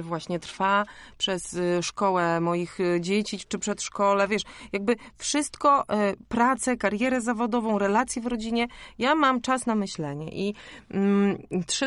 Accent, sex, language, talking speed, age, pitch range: native, female, Polish, 120 wpm, 30-49, 175-215 Hz